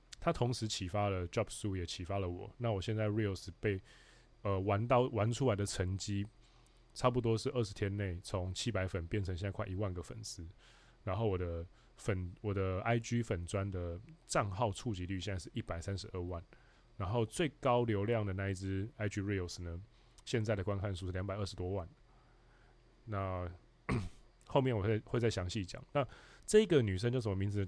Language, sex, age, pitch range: Chinese, male, 20-39, 95-115 Hz